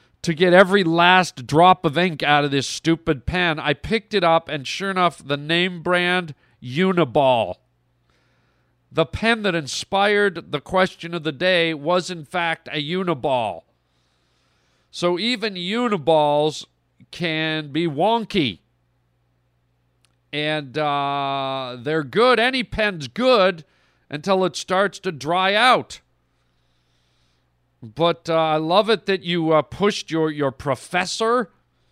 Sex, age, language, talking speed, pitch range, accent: male, 40-59, English, 130 wpm, 145-185 Hz, American